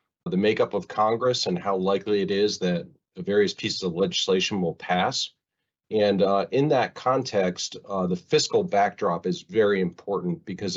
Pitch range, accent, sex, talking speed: 90-110 Hz, American, male, 165 wpm